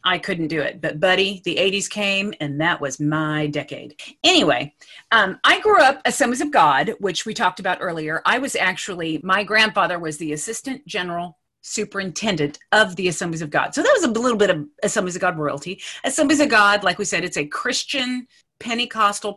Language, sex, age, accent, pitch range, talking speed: English, female, 40-59, American, 180-245 Hz, 195 wpm